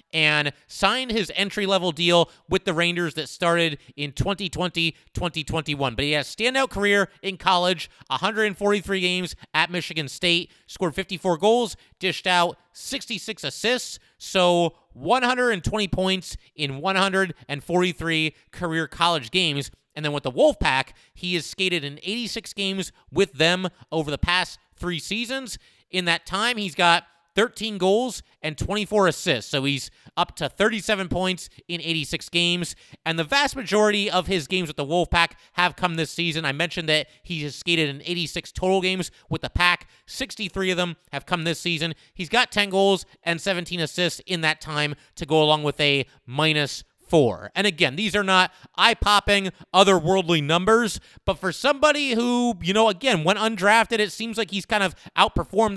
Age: 30-49